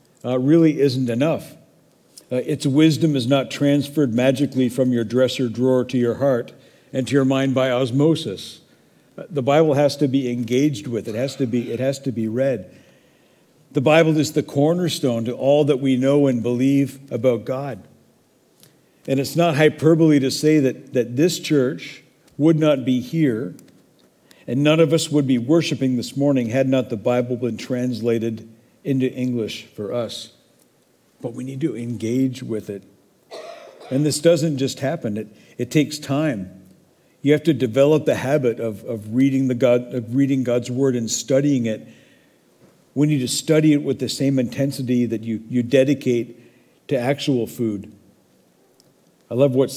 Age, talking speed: 50-69, 165 wpm